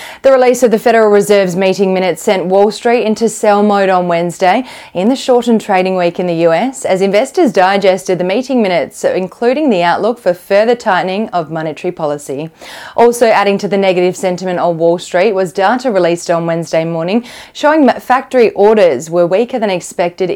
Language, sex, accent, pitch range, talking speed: English, female, Australian, 175-220 Hz, 185 wpm